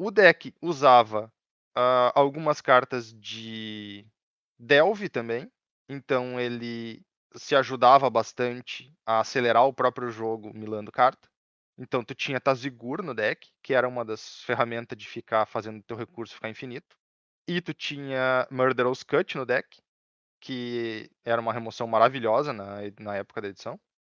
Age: 20-39